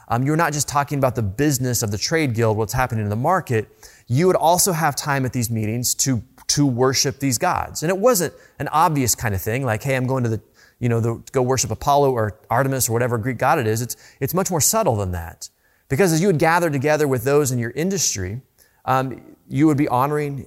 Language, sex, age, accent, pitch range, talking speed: English, male, 30-49, American, 115-145 Hz, 240 wpm